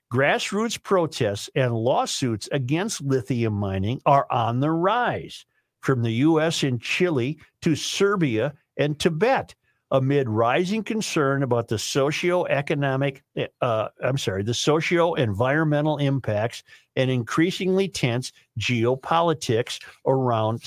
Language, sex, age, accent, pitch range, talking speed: English, male, 50-69, American, 125-175 Hz, 110 wpm